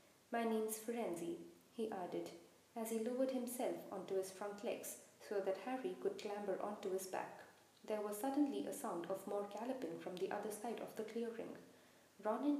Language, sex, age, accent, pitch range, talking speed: English, female, 20-39, Indian, 200-265 Hz, 175 wpm